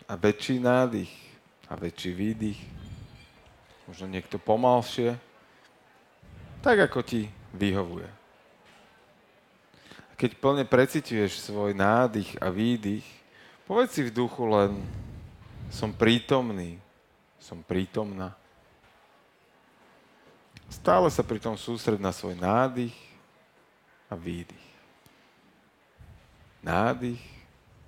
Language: Slovak